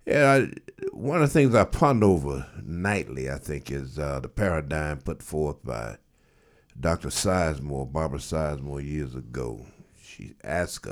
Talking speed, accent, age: 150 wpm, American, 60-79